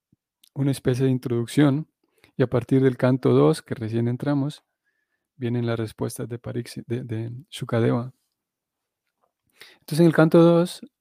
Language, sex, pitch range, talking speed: Spanish, male, 125-150 Hz, 140 wpm